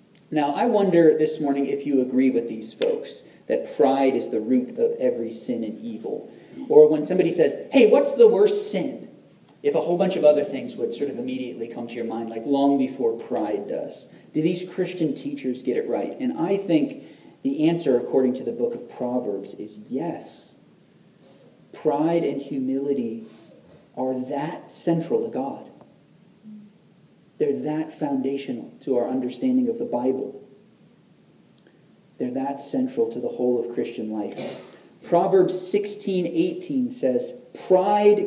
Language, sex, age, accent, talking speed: English, male, 40-59, American, 160 wpm